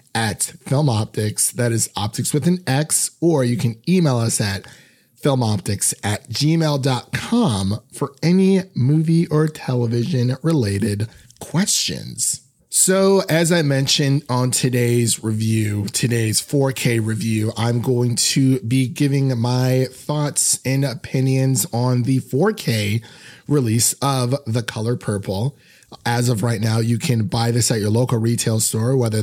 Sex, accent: male, American